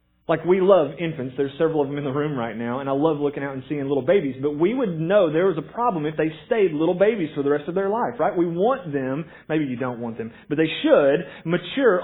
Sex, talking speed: male, 270 wpm